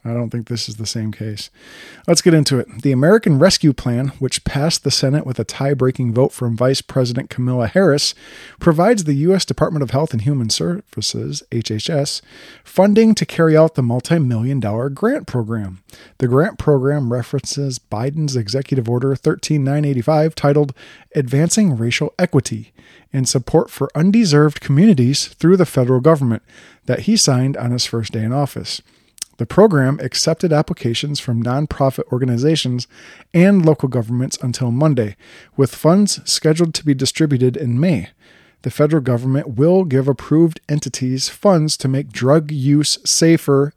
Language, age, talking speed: English, 40-59, 150 wpm